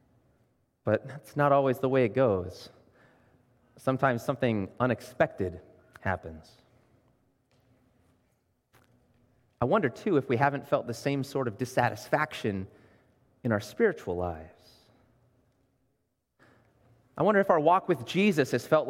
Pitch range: 120-150 Hz